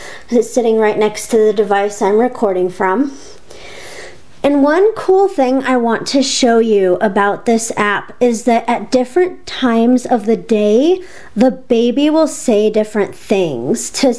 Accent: American